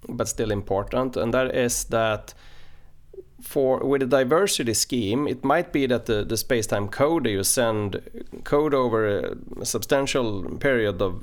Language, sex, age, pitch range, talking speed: English, male, 30-49, 100-130 Hz, 150 wpm